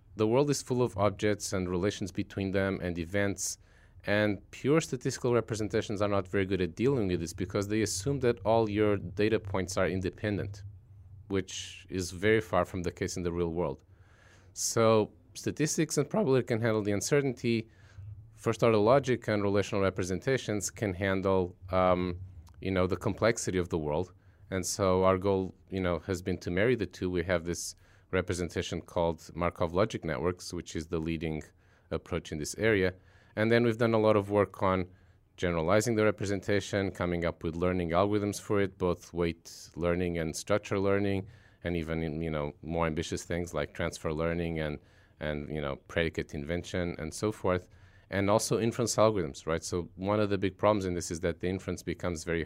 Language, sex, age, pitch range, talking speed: English, male, 30-49, 90-105 Hz, 185 wpm